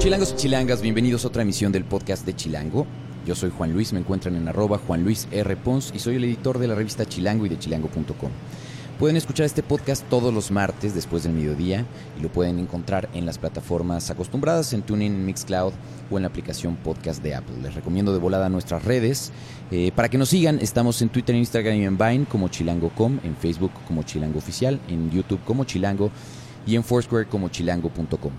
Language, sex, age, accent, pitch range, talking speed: Spanish, male, 30-49, Mexican, 85-120 Hz, 205 wpm